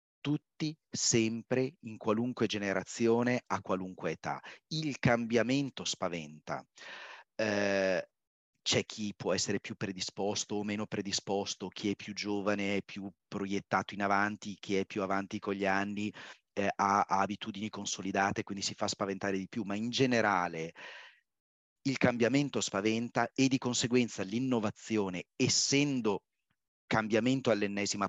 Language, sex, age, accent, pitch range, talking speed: Italian, male, 40-59, native, 95-120 Hz, 130 wpm